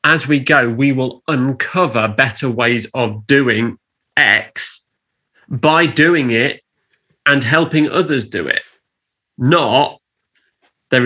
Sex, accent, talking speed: male, British, 115 wpm